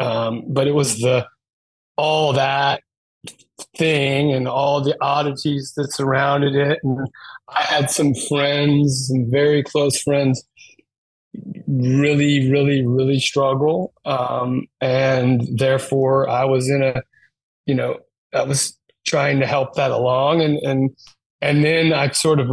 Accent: American